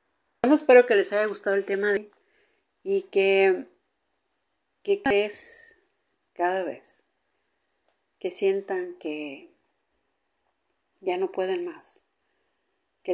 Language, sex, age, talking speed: Spanish, female, 50-69, 105 wpm